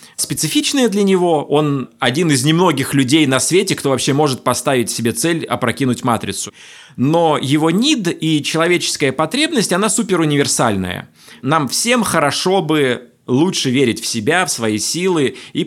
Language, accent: Russian, native